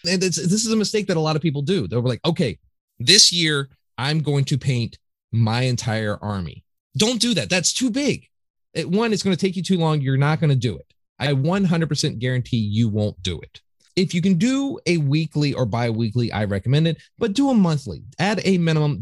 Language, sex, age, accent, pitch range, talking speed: English, male, 30-49, American, 115-165 Hz, 225 wpm